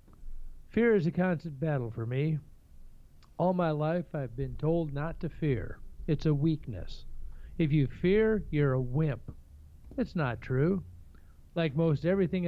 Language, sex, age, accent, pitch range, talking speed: English, male, 50-69, American, 110-170 Hz, 150 wpm